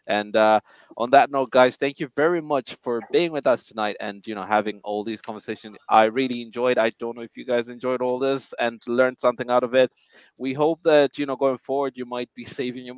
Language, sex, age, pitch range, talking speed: English, male, 20-39, 105-130 Hz, 240 wpm